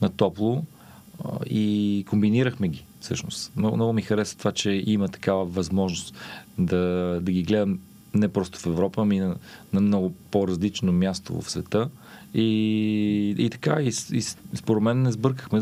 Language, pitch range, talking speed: Bulgarian, 90-105 Hz, 160 wpm